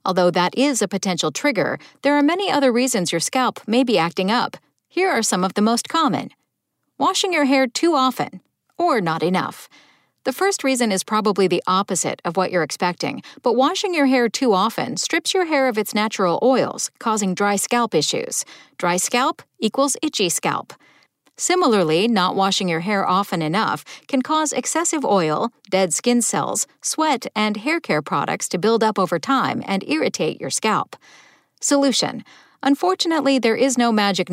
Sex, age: female, 50-69